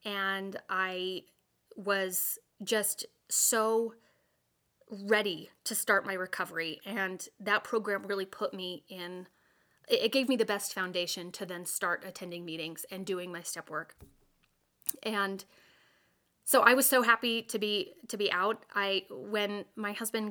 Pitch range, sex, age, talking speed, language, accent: 185-230 Hz, female, 20-39, 140 wpm, English, American